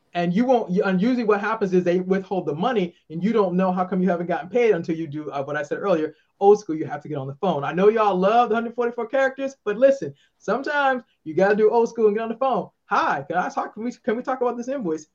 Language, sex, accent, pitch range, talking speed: English, male, American, 170-210 Hz, 275 wpm